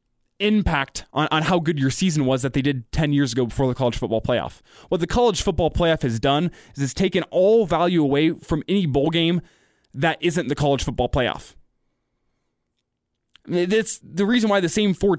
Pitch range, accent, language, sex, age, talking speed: 140-190 Hz, American, English, male, 20-39, 195 wpm